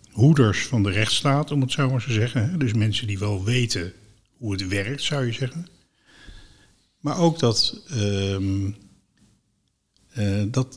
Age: 60-79